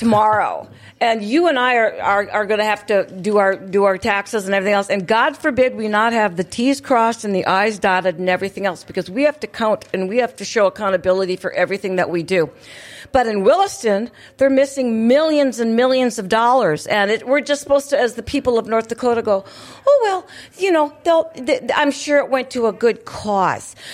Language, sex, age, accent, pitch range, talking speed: English, female, 50-69, American, 215-285 Hz, 225 wpm